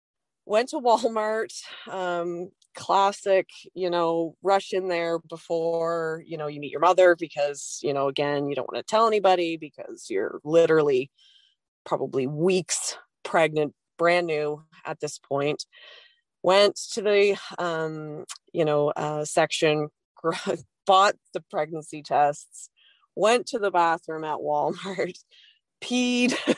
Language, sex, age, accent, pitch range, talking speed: English, female, 20-39, American, 145-195 Hz, 130 wpm